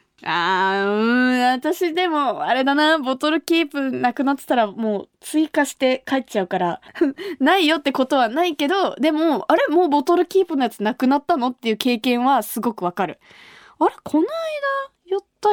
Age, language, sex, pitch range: 20-39, Japanese, female, 200-300 Hz